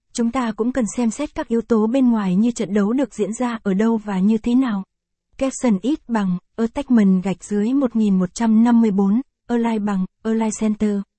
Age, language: 20-39, Vietnamese